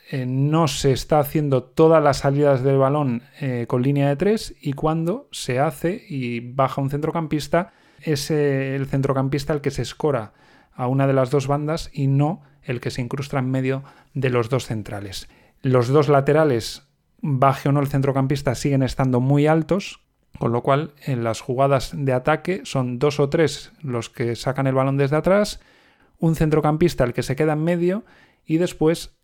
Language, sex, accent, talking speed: Spanish, male, Spanish, 185 wpm